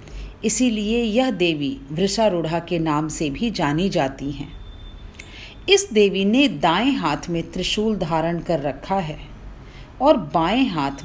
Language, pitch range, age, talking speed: Hindi, 145-240 Hz, 40-59, 135 wpm